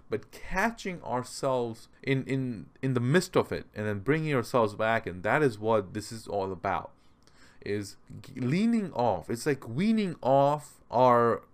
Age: 30-49